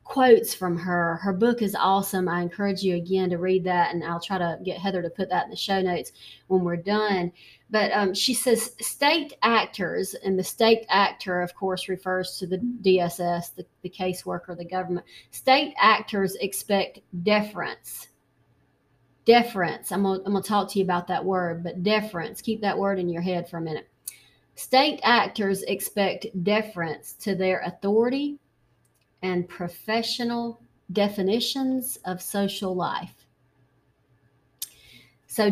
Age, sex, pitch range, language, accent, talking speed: 30-49, female, 175-205 Hz, English, American, 155 wpm